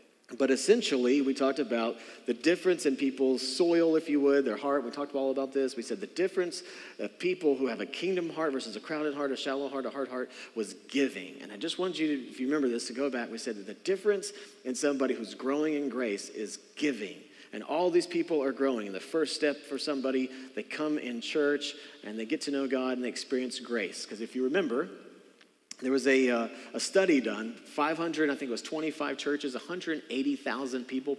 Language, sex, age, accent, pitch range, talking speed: English, male, 40-59, American, 125-150 Hz, 220 wpm